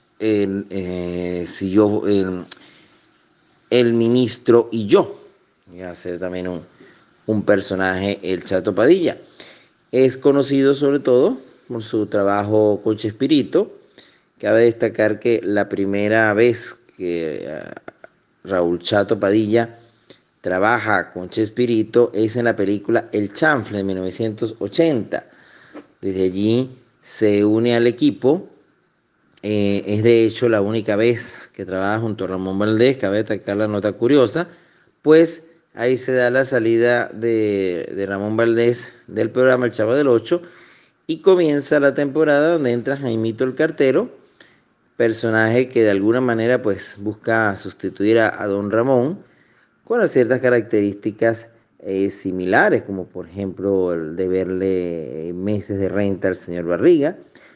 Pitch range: 100-120 Hz